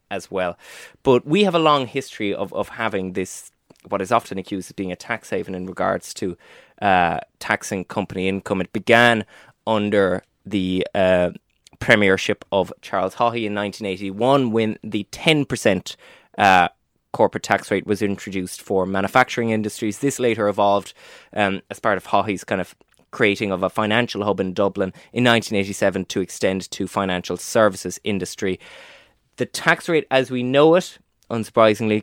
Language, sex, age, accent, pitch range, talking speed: English, male, 20-39, Irish, 95-120 Hz, 155 wpm